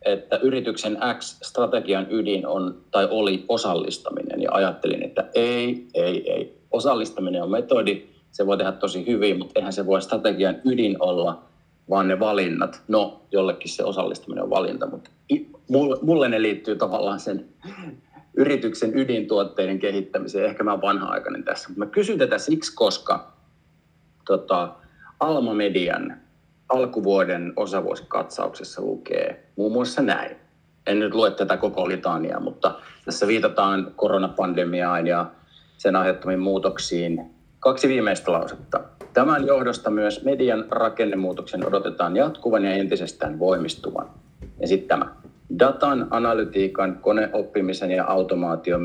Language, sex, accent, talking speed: Finnish, male, native, 125 wpm